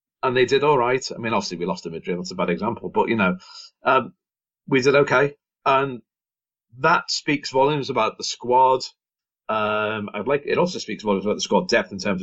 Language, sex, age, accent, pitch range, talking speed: English, male, 40-59, British, 105-150 Hz, 210 wpm